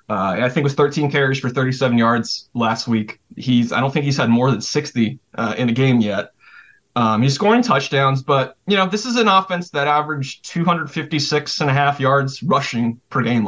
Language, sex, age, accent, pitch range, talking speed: English, male, 20-39, American, 120-150 Hz, 210 wpm